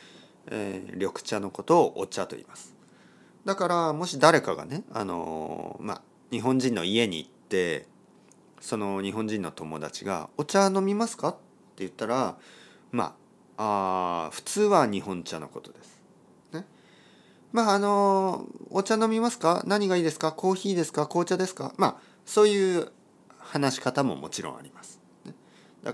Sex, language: male, Japanese